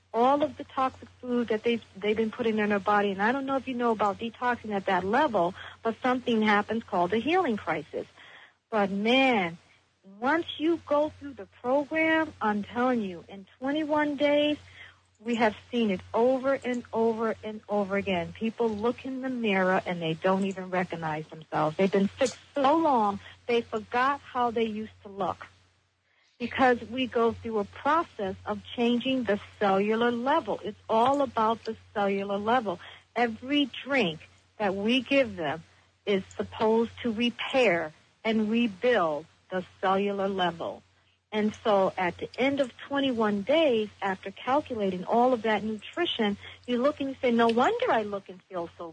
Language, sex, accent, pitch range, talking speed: English, female, American, 200-255 Hz, 170 wpm